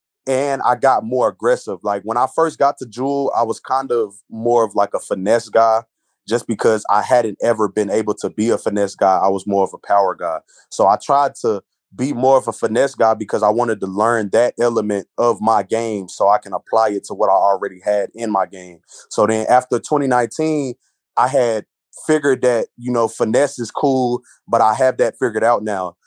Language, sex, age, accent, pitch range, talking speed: English, male, 20-39, American, 100-120 Hz, 215 wpm